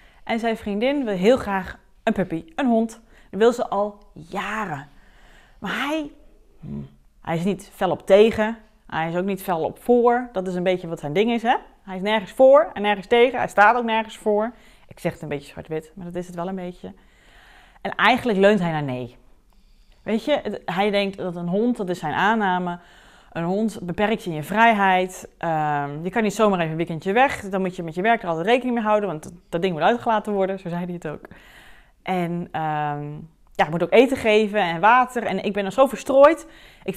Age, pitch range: 30-49, 175-225 Hz